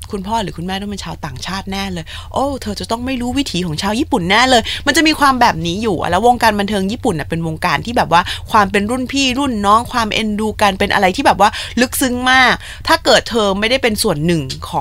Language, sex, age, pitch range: Thai, female, 20-39, 180-255 Hz